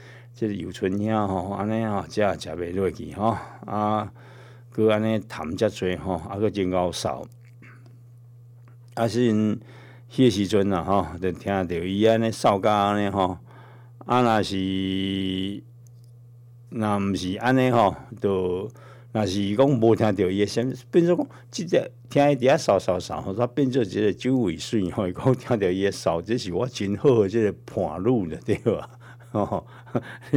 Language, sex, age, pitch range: Chinese, male, 60-79, 95-120 Hz